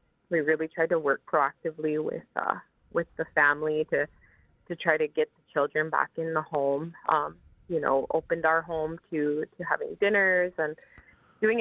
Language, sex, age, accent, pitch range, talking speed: English, female, 20-39, American, 150-175 Hz, 175 wpm